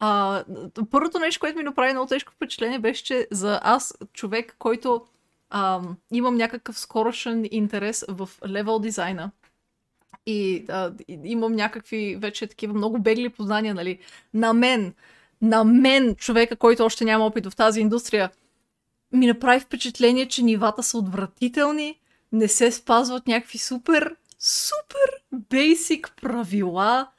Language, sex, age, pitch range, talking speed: Bulgarian, female, 20-39, 205-250 Hz, 130 wpm